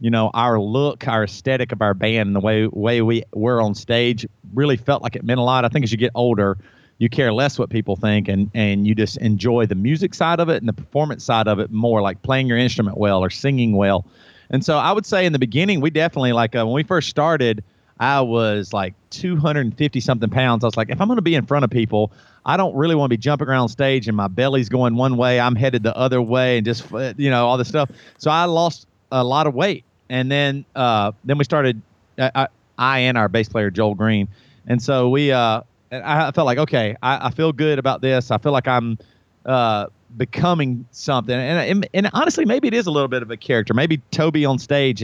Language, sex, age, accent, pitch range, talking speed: English, male, 40-59, American, 110-145 Hz, 240 wpm